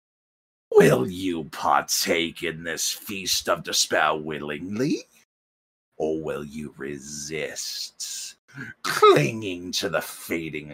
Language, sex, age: English, male, 50-69